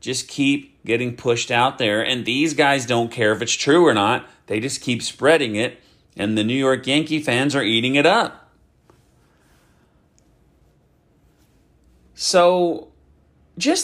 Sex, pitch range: male, 105-150 Hz